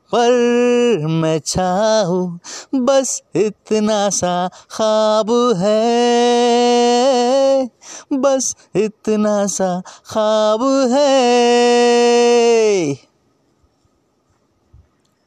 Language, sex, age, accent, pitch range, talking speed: Hindi, male, 30-49, native, 195-240 Hz, 50 wpm